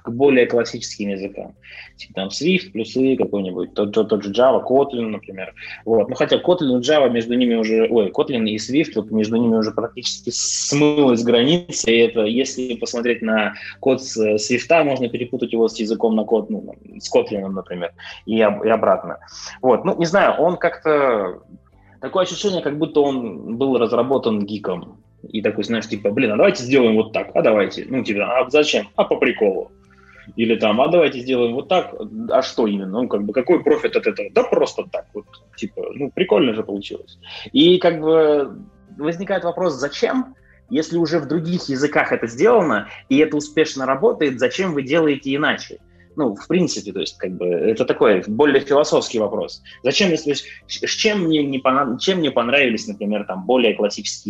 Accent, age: native, 20-39